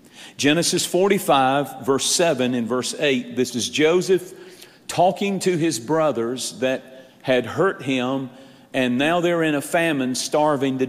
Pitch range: 130-170 Hz